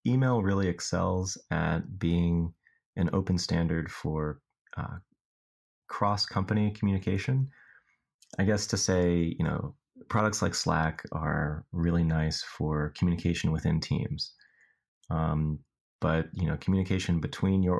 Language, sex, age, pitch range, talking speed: English, male, 30-49, 80-95 Hz, 120 wpm